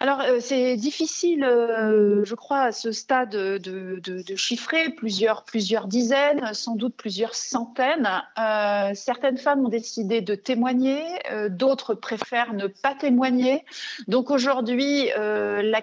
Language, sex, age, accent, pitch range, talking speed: French, female, 40-59, French, 210-265 Hz, 150 wpm